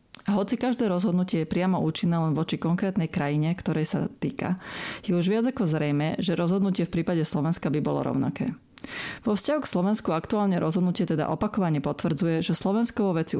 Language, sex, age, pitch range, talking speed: Slovak, female, 30-49, 160-190 Hz, 175 wpm